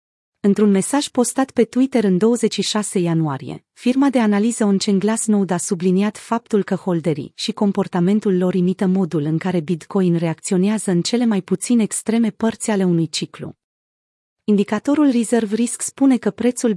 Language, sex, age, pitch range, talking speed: Romanian, female, 30-49, 180-220 Hz, 150 wpm